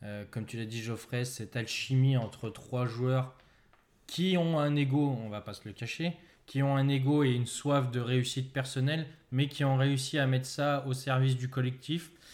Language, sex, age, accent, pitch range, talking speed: French, male, 20-39, French, 125-145 Hz, 205 wpm